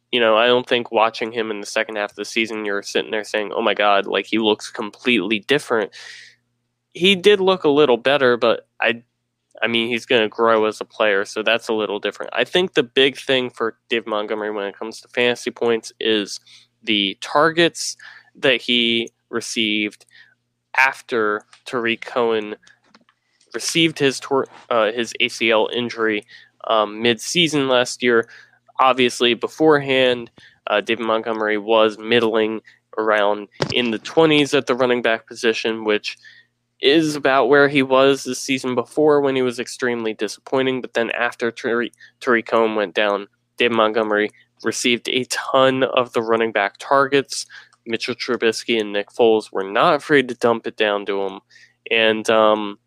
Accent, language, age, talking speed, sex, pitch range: American, English, 20-39, 165 wpm, male, 110-130 Hz